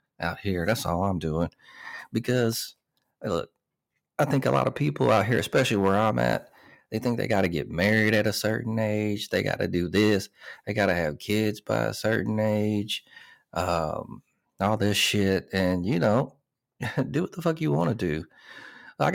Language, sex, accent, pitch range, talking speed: English, male, American, 85-110 Hz, 190 wpm